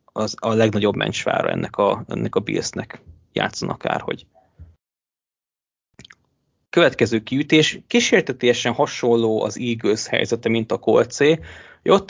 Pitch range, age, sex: 110-125 Hz, 20-39, male